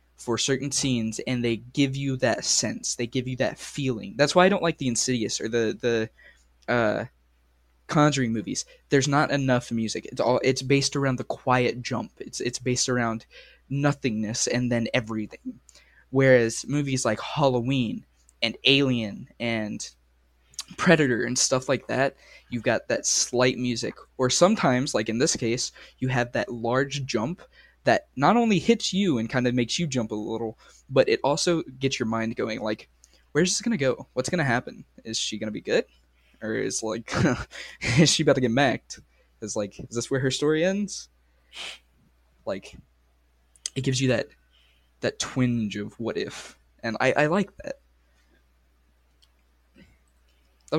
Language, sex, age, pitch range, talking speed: English, male, 10-29, 105-135 Hz, 170 wpm